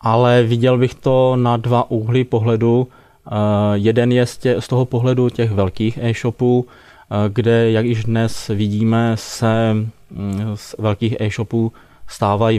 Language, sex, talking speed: Czech, male, 150 wpm